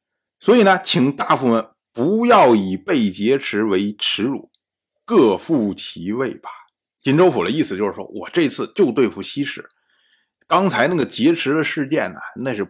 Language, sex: Chinese, male